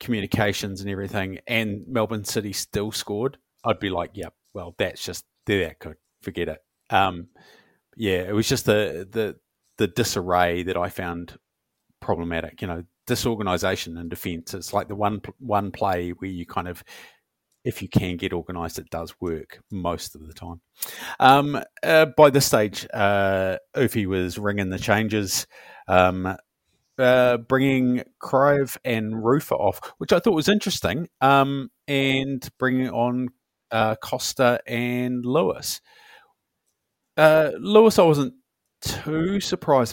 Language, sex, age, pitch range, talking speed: English, male, 30-49, 95-130 Hz, 145 wpm